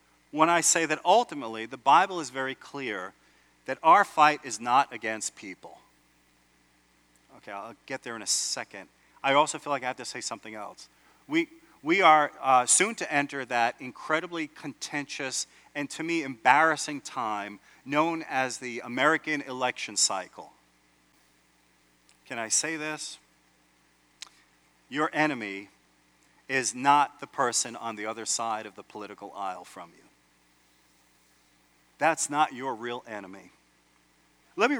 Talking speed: 140 wpm